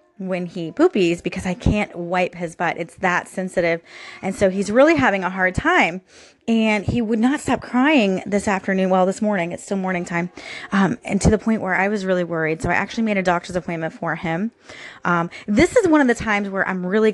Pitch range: 175-215 Hz